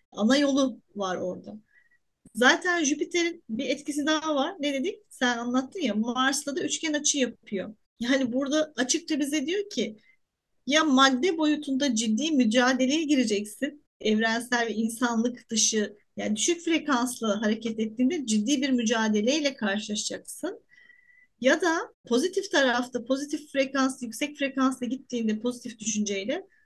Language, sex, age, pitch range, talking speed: Turkish, female, 40-59, 235-295 Hz, 125 wpm